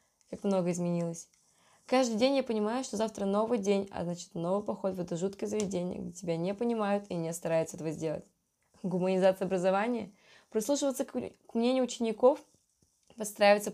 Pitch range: 180-220 Hz